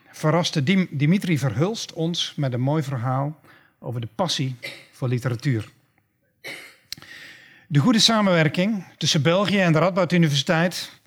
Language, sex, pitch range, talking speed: Dutch, male, 140-175 Hz, 120 wpm